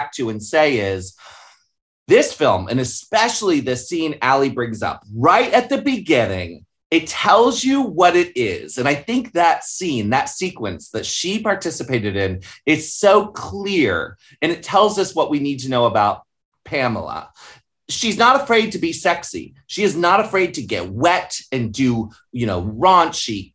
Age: 30-49